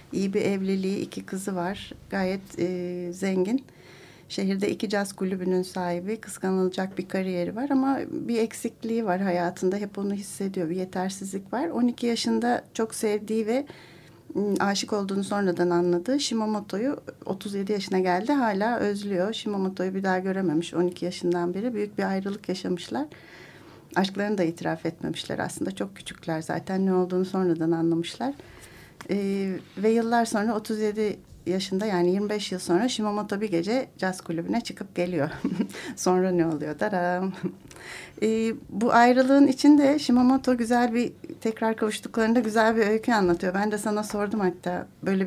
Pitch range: 180-225 Hz